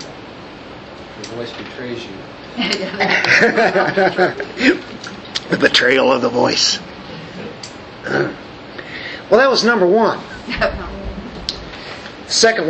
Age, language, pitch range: 40-59, English, 150-195 Hz